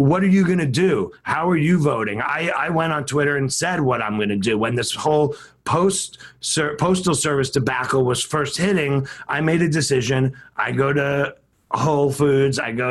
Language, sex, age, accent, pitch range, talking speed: English, male, 30-49, American, 125-150 Hz, 200 wpm